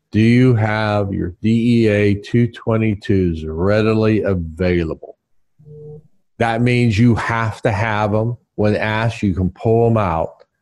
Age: 40-59